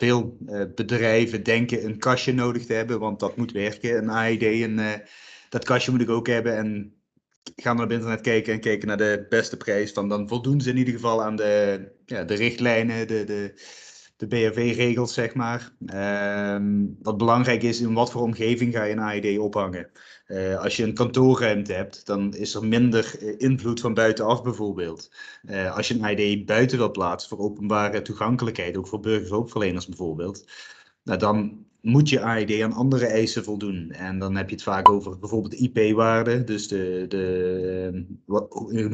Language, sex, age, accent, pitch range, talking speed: Dutch, male, 20-39, Dutch, 100-115 Hz, 180 wpm